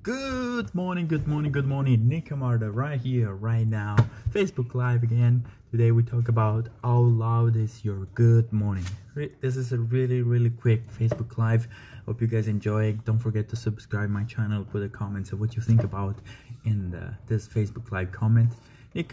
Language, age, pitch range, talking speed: English, 20-39, 105-130 Hz, 180 wpm